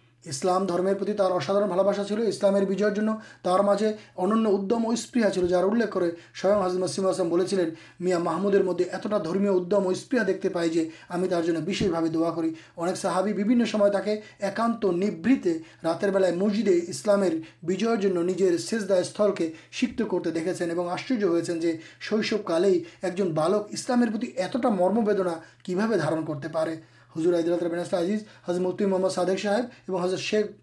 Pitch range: 175-215 Hz